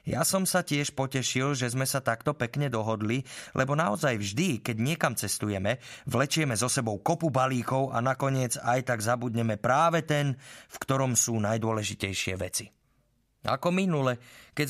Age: 20-39